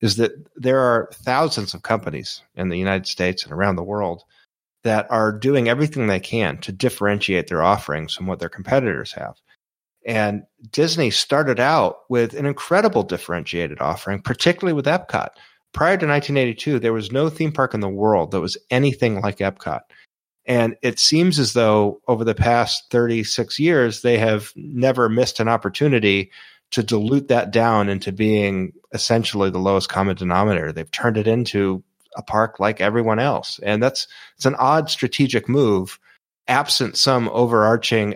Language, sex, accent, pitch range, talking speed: English, male, American, 100-130 Hz, 165 wpm